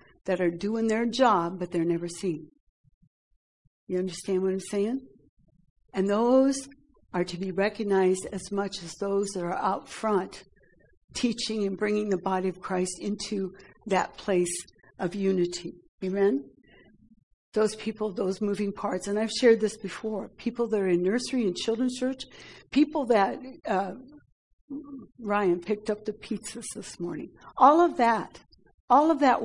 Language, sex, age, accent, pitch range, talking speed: English, female, 60-79, American, 195-240 Hz, 155 wpm